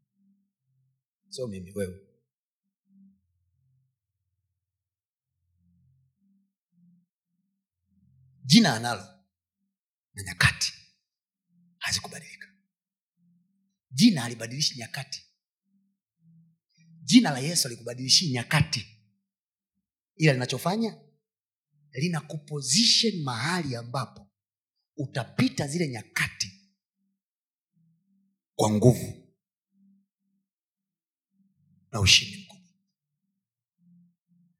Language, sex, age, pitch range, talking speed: Swahili, male, 40-59, 125-195 Hz, 50 wpm